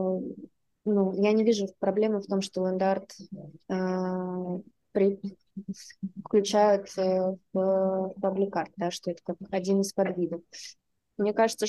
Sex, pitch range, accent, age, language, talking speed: female, 190-215 Hz, native, 20-39, Russian, 110 wpm